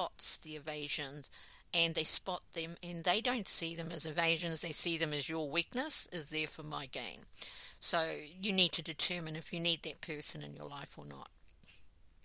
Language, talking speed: English, 190 wpm